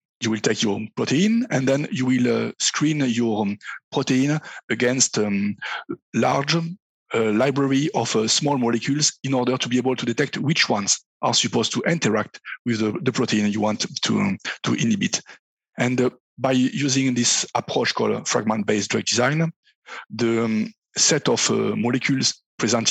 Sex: male